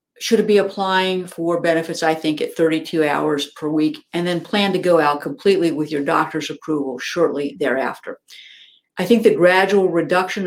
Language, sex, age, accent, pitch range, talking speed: English, female, 50-69, American, 165-205 Hz, 170 wpm